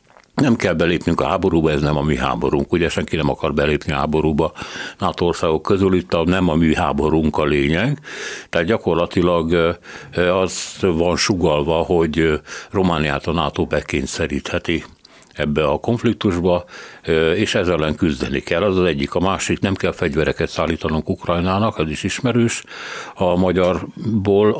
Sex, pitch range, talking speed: male, 80-90 Hz, 145 wpm